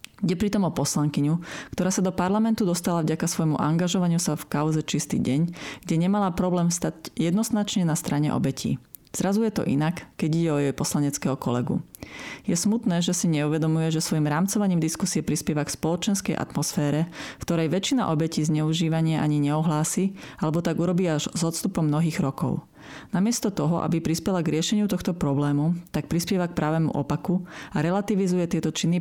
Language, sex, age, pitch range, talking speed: Slovak, female, 30-49, 150-185 Hz, 165 wpm